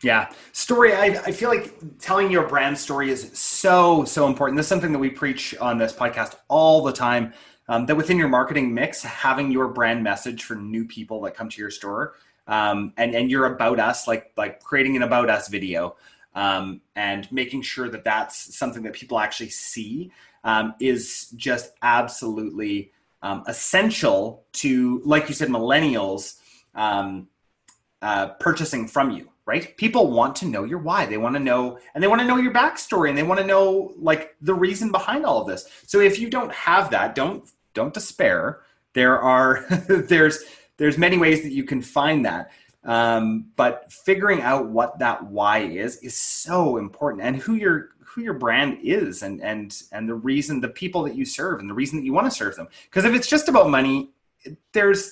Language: English